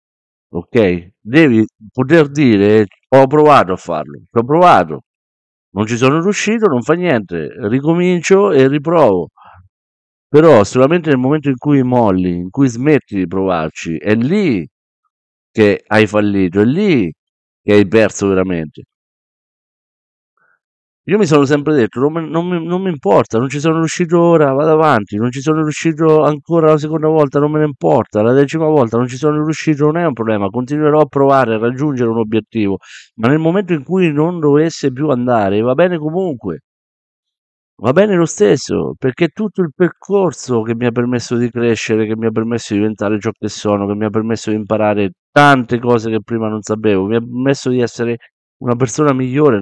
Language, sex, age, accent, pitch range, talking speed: Italian, male, 50-69, native, 105-150 Hz, 175 wpm